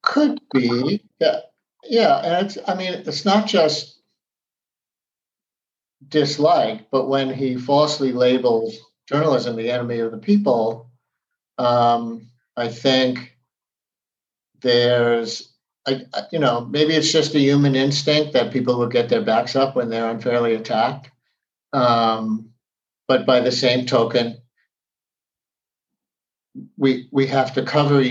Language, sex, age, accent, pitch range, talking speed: English, male, 50-69, American, 120-145 Hz, 125 wpm